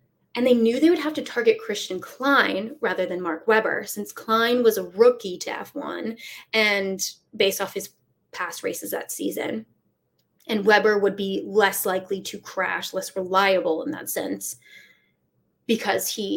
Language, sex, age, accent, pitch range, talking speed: English, female, 20-39, American, 195-285 Hz, 160 wpm